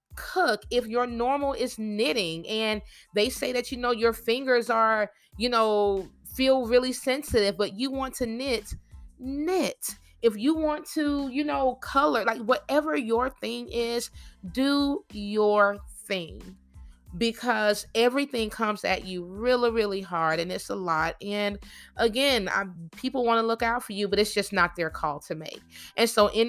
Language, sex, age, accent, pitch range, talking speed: English, female, 30-49, American, 180-240 Hz, 170 wpm